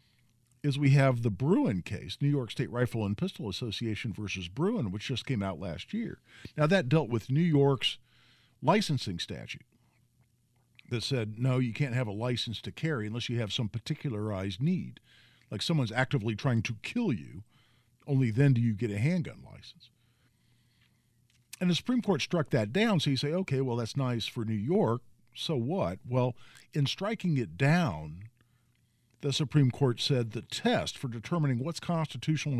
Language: English